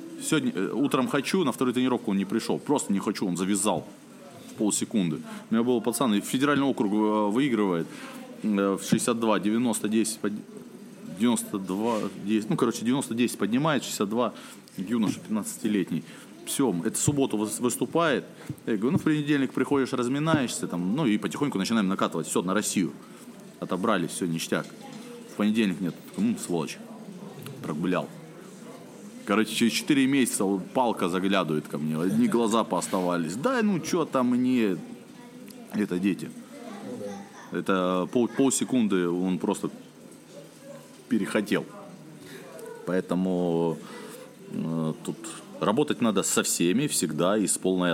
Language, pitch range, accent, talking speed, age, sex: Russian, 90-135 Hz, native, 125 wpm, 30-49, male